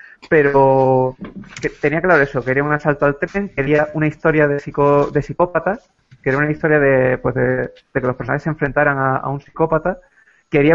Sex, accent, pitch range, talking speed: male, Spanish, 130-150 Hz, 185 wpm